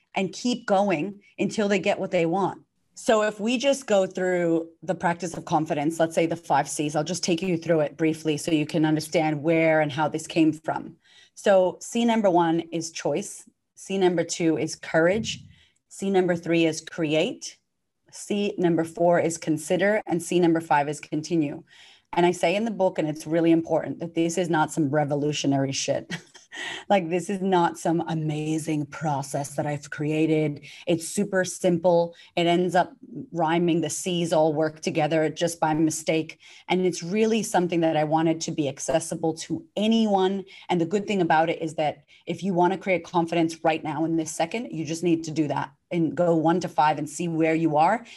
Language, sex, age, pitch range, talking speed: English, female, 30-49, 155-180 Hz, 195 wpm